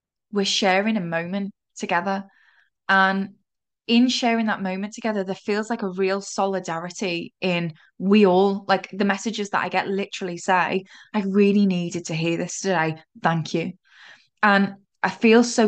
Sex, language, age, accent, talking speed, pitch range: female, English, 10-29, British, 155 wpm, 185-220 Hz